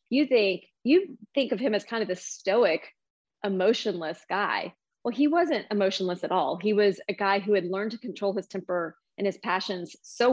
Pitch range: 195-235 Hz